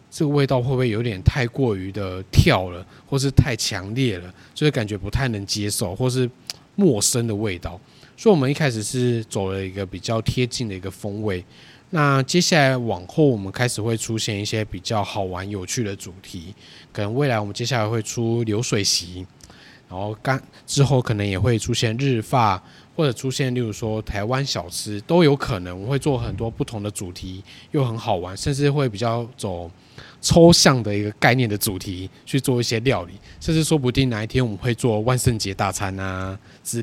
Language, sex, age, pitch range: Chinese, male, 20-39, 100-130 Hz